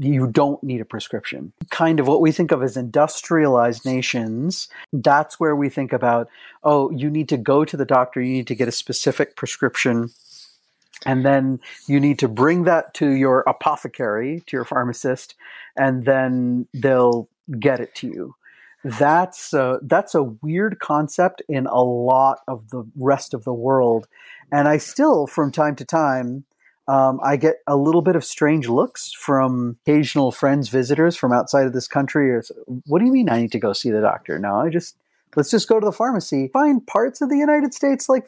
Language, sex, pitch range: English, male, 130-160 Hz